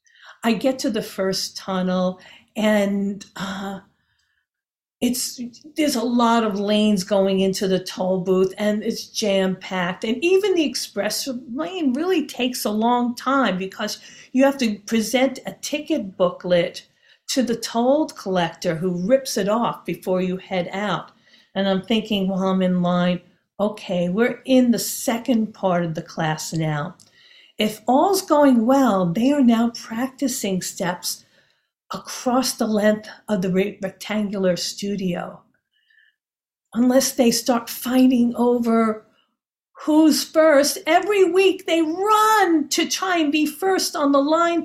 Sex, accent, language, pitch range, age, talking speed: female, American, English, 195-285 Hz, 50-69, 140 wpm